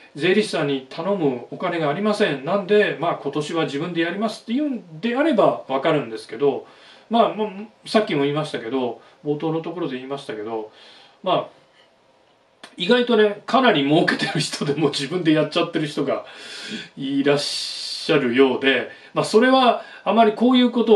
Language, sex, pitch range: Japanese, male, 140-225 Hz